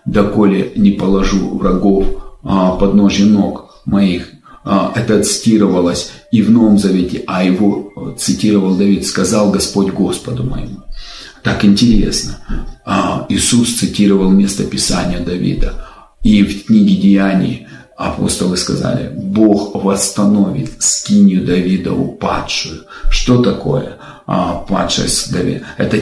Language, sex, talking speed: Russian, male, 100 wpm